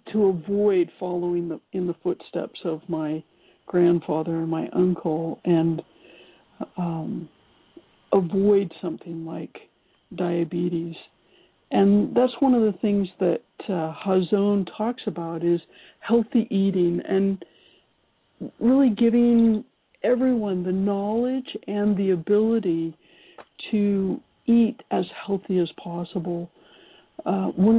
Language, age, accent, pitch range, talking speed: English, 60-79, American, 175-215 Hz, 110 wpm